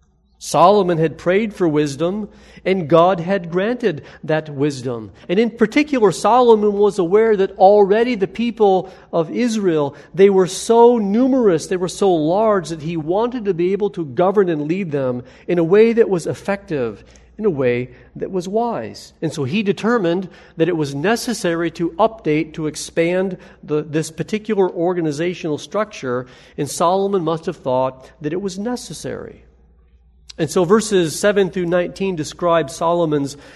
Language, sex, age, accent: English, male, 40-59, American